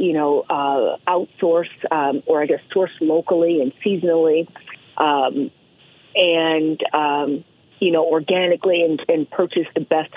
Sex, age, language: female, 40-59, English